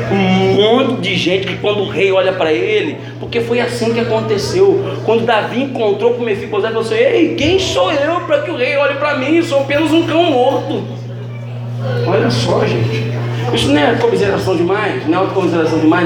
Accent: Brazilian